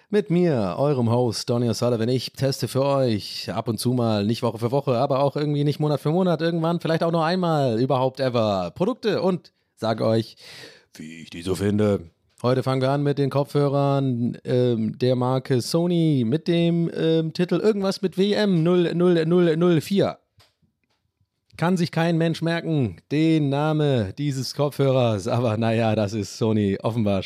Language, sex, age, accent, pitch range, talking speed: German, male, 30-49, German, 125-195 Hz, 165 wpm